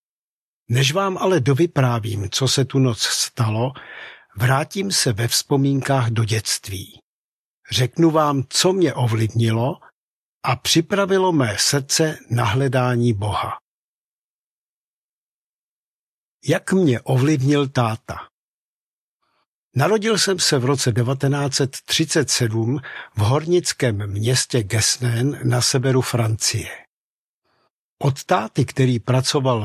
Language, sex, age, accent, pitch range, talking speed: Czech, male, 50-69, native, 120-150 Hz, 95 wpm